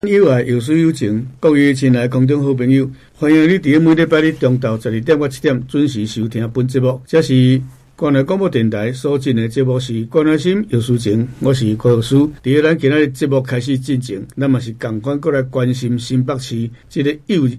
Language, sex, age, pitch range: Chinese, male, 60-79, 115-145 Hz